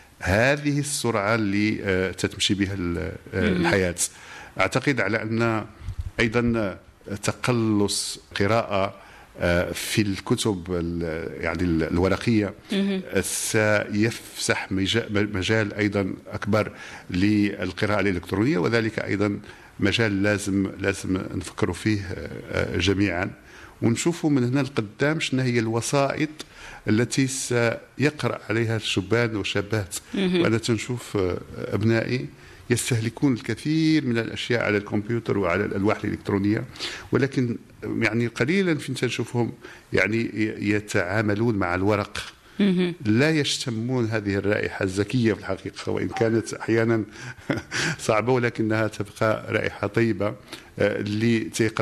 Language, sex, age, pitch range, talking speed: English, male, 50-69, 100-120 Hz, 90 wpm